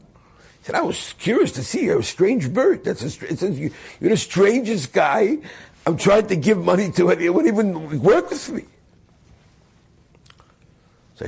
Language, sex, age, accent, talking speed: English, male, 60-79, American, 170 wpm